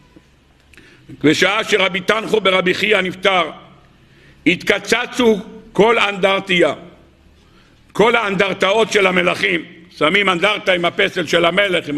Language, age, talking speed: Hebrew, 60-79, 100 wpm